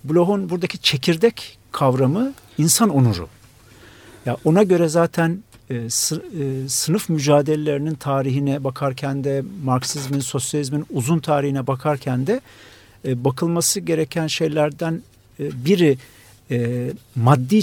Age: 50-69